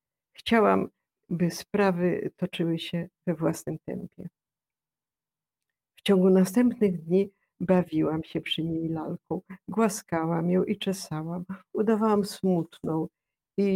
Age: 50-69